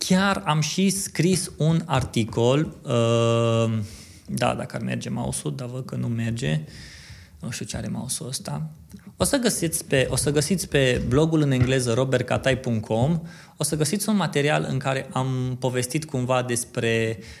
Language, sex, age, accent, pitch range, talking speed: Romanian, male, 20-39, native, 115-150 Hz, 150 wpm